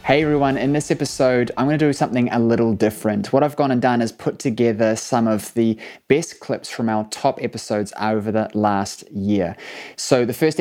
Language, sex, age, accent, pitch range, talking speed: English, male, 20-39, Australian, 105-125 Hz, 210 wpm